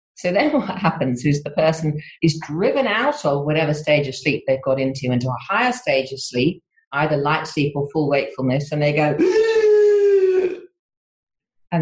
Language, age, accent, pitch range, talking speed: English, 40-59, British, 145-210 Hz, 175 wpm